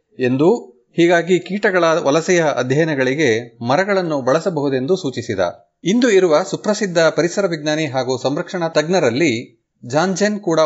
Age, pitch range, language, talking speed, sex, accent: 30-49, 140-190 Hz, Kannada, 100 wpm, male, native